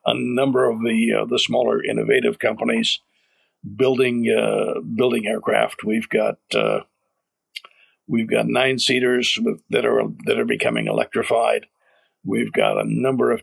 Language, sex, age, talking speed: English, male, 60-79, 140 wpm